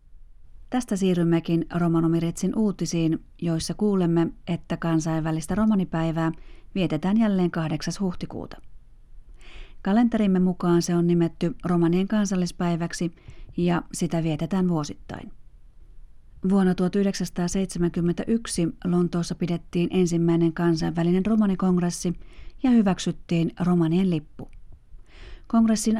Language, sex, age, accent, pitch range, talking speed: Finnish, female, 30-49, native, 165-190 Hz, 85 wpm